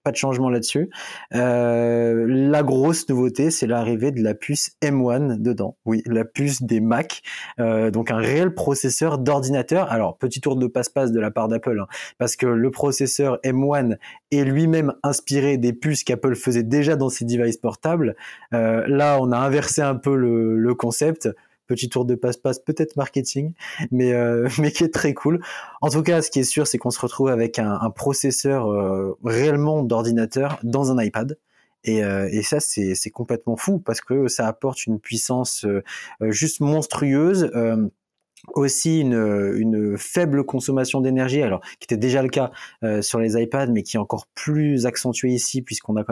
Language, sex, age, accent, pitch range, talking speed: French, male, 20-39, French, 115-140 Hz, 180 wpm